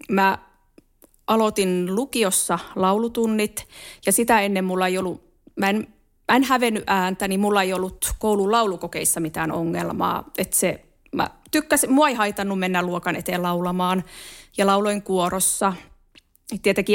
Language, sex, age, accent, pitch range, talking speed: Finnish, female, 20-39, native, 180-230 Hz, 135 wpm